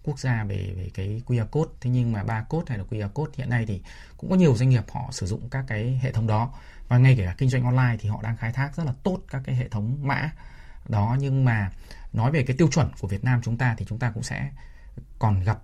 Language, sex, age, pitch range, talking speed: Vietnamese, male, 20-39, 105-135 Hz, 275 wpm